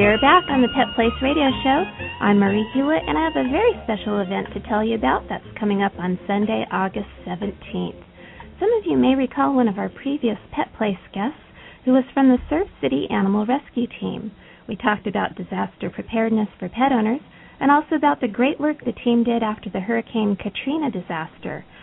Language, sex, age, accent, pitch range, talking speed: English, female, 40-59, American, 205-260 Hz, 200 wpm